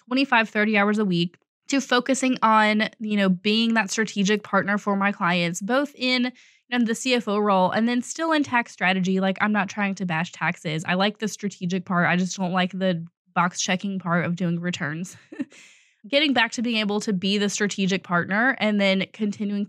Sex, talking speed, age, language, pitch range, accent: female, 195 wpm, 20-39, English, 185-220 Hz, American